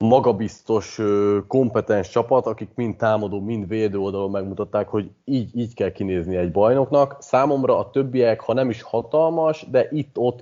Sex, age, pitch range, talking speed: male, 30-49, 105-130 Hz, 150 wpm